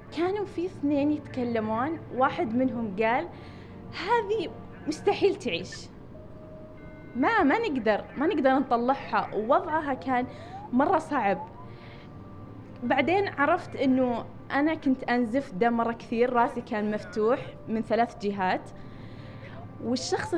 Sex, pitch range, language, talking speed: female, 195-265 Hz, Arabic, 105 wpm